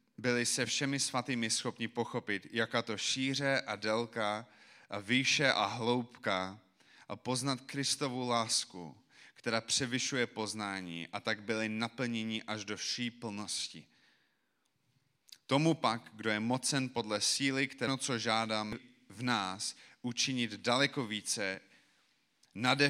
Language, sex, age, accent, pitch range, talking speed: Czech, male, 30-49, native, 105-125 Hz, 125 wpm